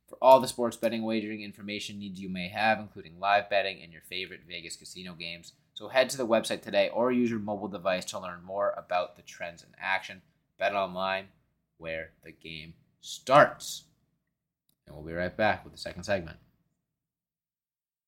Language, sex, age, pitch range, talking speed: English, male, 20-39, 90-110 Hz, 180 wpm